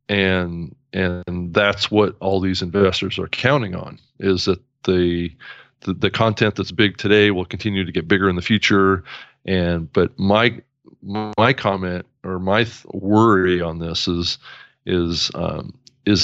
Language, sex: English, male